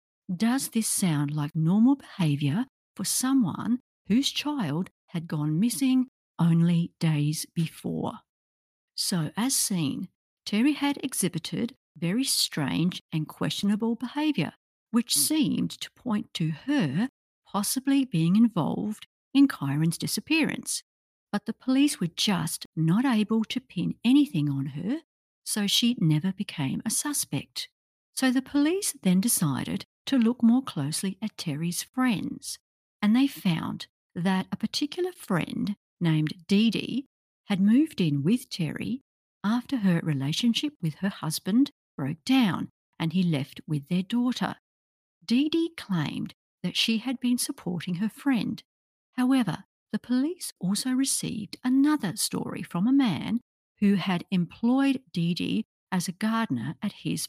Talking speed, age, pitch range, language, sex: 135 wpm, 50-69, 170-260 Hz, English, female